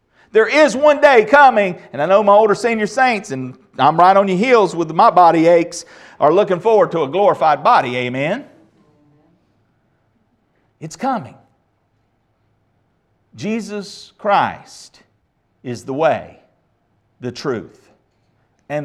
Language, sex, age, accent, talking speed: English, male, 50-69, American, 125 wpm